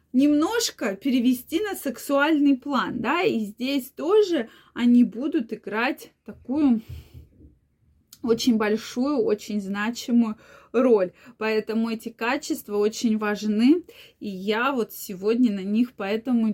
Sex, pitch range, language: female, 220-280 Hz, Russian